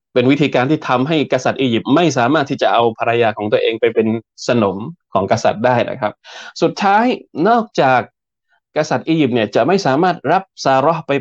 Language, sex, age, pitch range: Thai, male, 20-39, 115-160 Hz